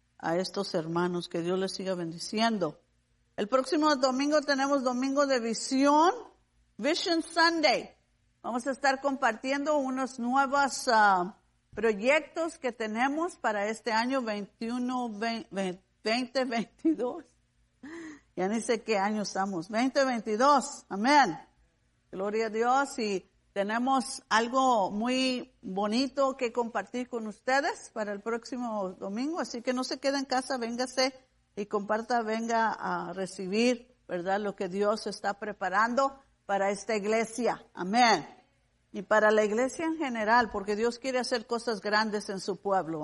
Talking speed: 135 wpm